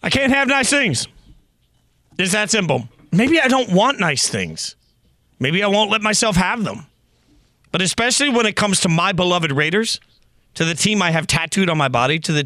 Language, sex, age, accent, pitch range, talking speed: English, male, 40-59, American, 140-185 Hz, 195 wpm